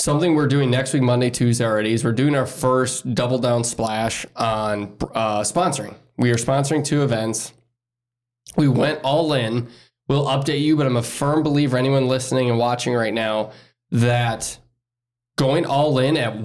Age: 20-39